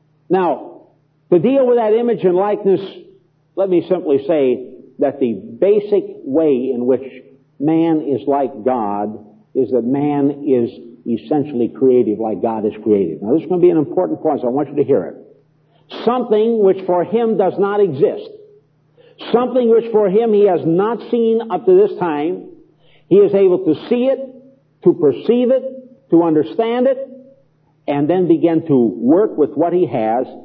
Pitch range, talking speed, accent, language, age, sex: 150-245 Hz, 175 wpm, American, English, 50-69, male